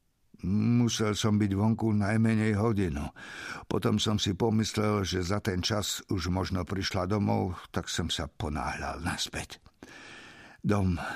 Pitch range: 90-115 Hz